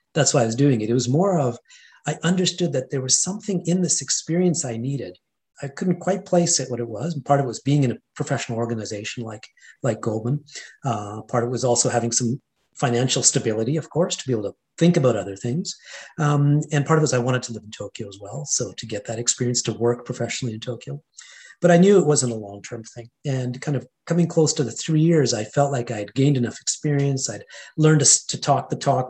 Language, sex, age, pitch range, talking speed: English, male, 40-59, 120-150 Hz, 245 wpm